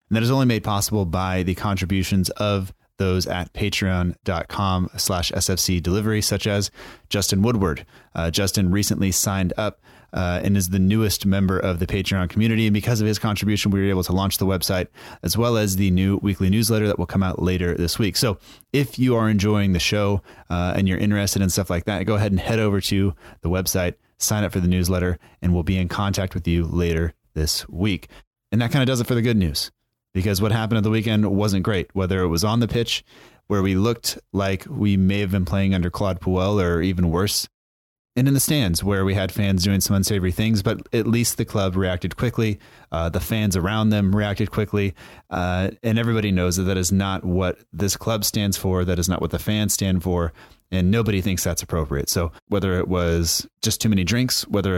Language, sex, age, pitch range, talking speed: English, male, 30-49, 90-105 Hz, 220 wpm